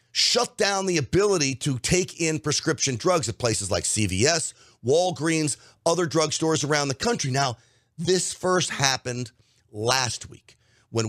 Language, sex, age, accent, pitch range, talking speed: English, male, 40-59, American, 120-160 Hz, 140 wpm